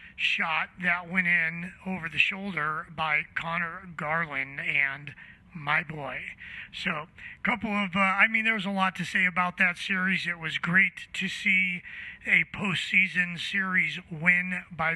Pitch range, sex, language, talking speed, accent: 165-195 Hz, male, English, 155 wpm, American